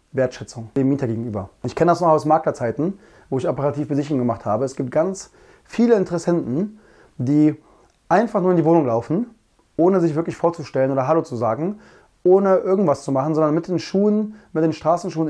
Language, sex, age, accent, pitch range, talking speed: German, male, 20-39, German, 140-170 Hz, 185 wpm